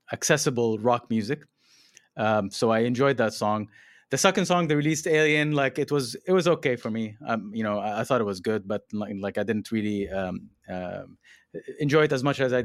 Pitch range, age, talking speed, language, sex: 110-145 Hz, 30-49, 220 wpm, English, male